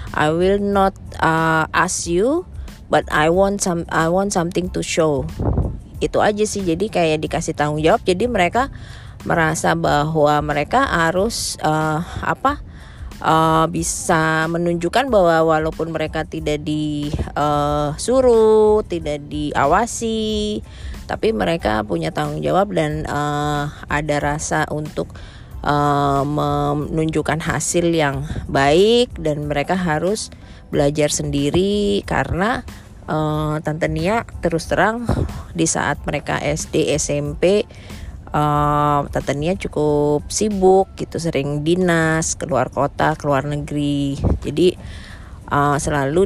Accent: native